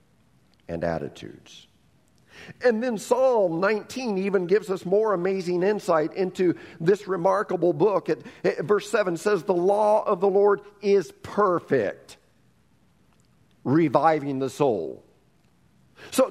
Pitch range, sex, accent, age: 180-260 Hz, male, American, 50-69